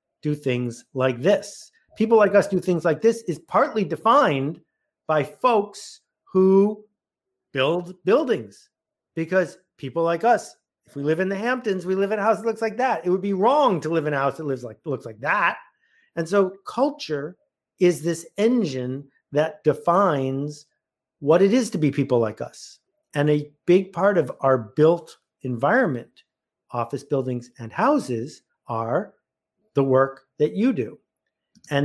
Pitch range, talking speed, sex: 140-200 Hz, 160 wpm, male